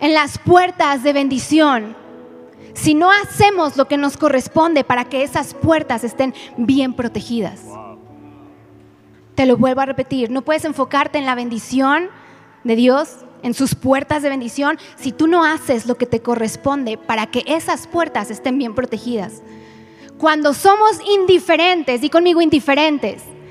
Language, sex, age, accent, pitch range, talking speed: Spanish, female, 20-39, Mexican, 270-375 Hz, 150 wpm